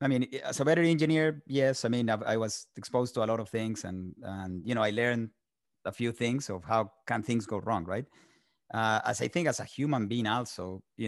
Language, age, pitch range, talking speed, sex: English, 30-49, 100-125 Hz, 240 wpm, male